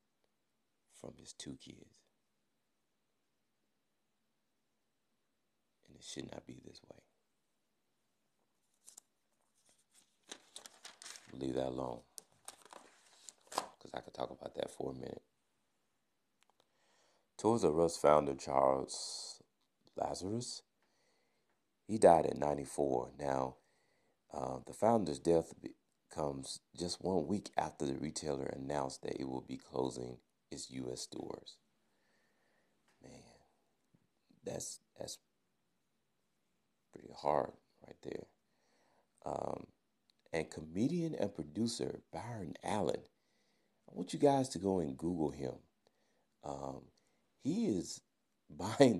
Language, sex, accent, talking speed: English, male, American, 100 wpm